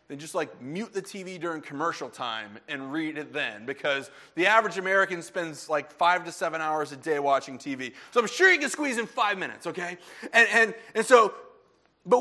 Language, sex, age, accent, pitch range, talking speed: English, male, 30-49, American, 190-250 Hz, 205 wpm